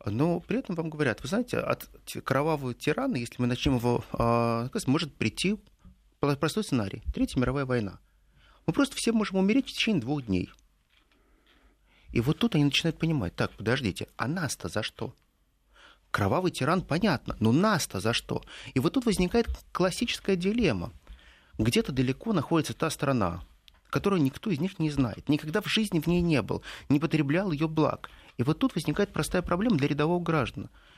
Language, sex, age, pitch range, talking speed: Russian, male, 30-49, 120-180 Hz, 165 wpm